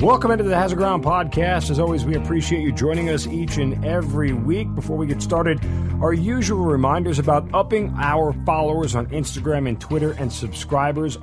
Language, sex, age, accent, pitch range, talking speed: English, male, 40-59, American, 120-155 Hz, 180 wpm